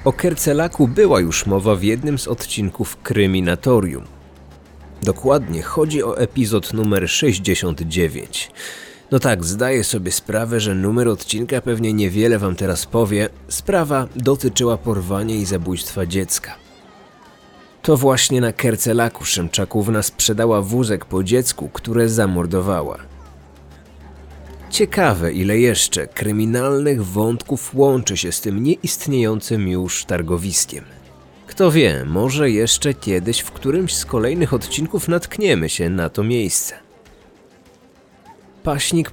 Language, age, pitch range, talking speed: Polish, 30-49, 95-130 Hz, 115 wpm